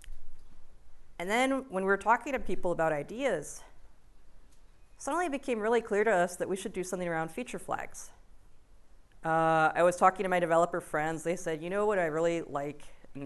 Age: 30-49